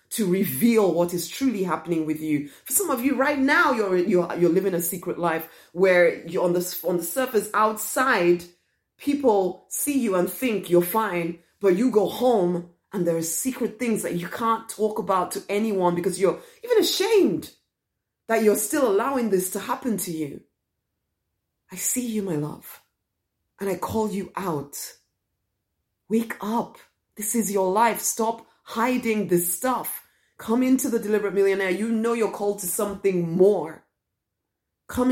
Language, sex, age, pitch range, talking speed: English, female, 30-49, 170-220 Hz, 165 wpm